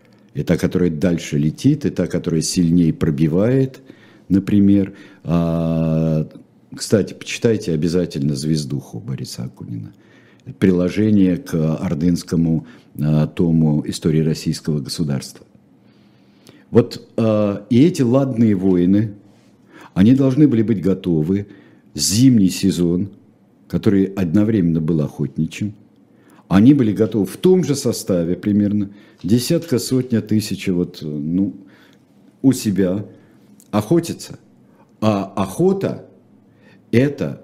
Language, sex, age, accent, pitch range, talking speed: Russian, male, 60-79, native, 85-110 Hz, 95 wpm